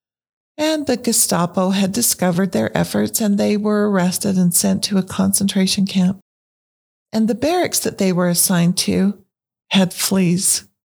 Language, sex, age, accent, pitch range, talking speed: English, female, 50-69, American, 180-210 Hz, 150 wpm